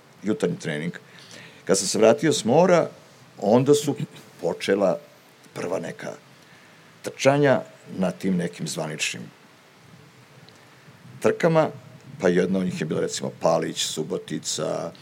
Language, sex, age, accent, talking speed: Croatian, male, 50-69, native, 110 wpm